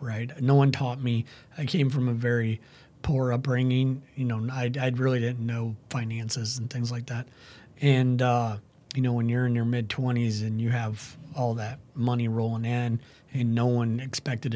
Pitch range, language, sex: 120-135 Hz, English, male